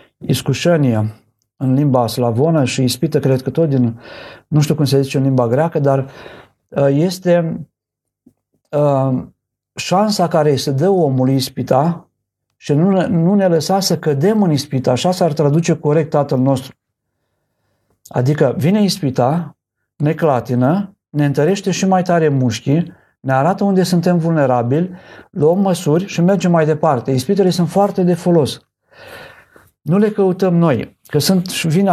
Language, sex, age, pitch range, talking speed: Romanian, male, 50-69, 135-170 Hz, 140 wpm